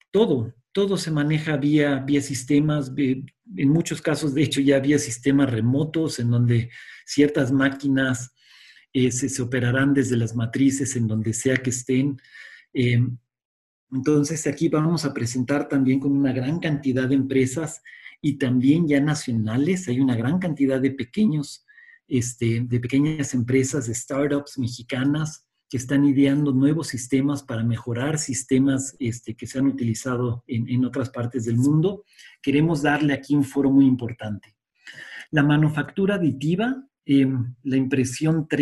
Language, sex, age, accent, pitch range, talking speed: Spanish, male, 40-59, Mexican, 125-150 Hz, 145 wpm